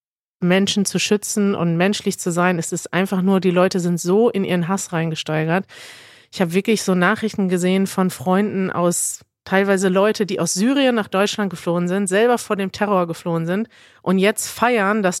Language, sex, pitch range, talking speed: German, female, 180-210 Hz, 185 wpm